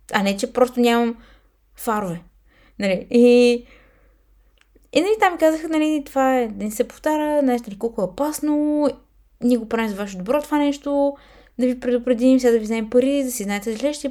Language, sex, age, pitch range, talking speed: Bulgarian, female, 20-39, 205-270 Hz, 185 wpm